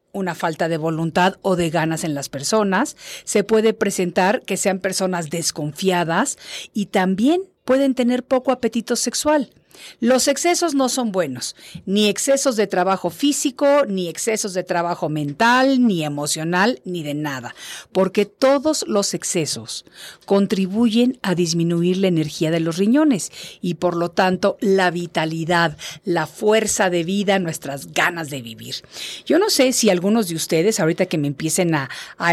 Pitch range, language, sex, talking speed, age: 170-225 Hz, Spanish, female, 155 wpm, 50-69